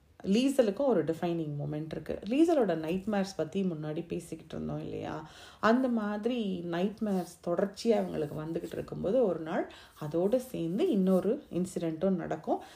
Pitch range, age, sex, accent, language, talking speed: 155-205 Hz, 30-49, female, native, Tamil, 130 wpm